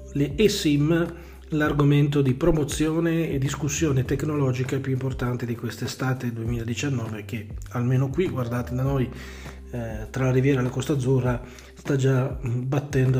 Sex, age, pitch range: male, 40-59, 120-145 Hz